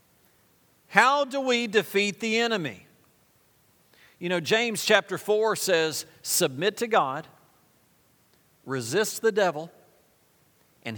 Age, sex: 50-69, male